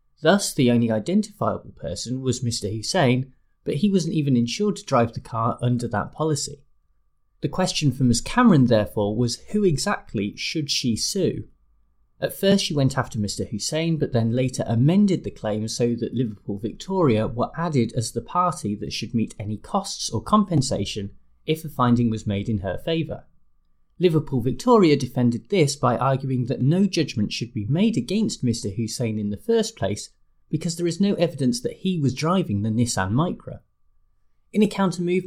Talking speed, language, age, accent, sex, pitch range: 175 wpm, English, 30-49, British, male, 115-165 Hz